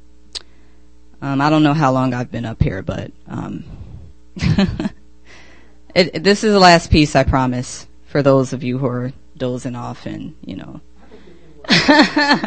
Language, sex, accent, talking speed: English, female, American, 145 wpm